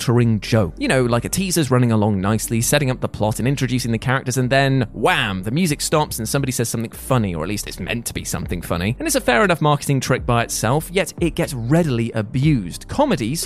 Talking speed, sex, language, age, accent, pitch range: 230 wpm, male, English, 20-39, British, 120-190 Hz